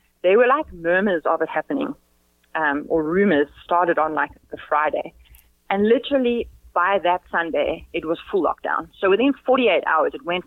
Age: 30-49